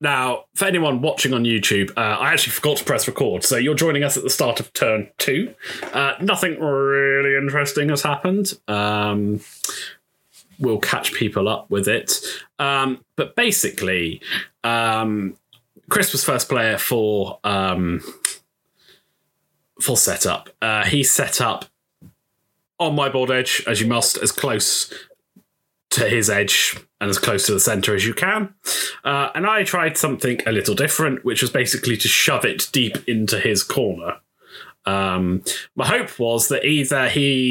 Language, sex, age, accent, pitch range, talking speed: English, male, 20-39, British, 110-150 Hz, 160 wpm